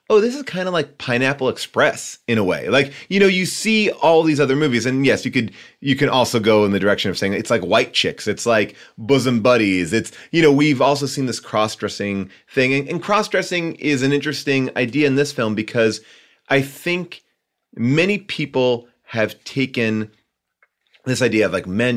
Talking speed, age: 195 wpm, 30-49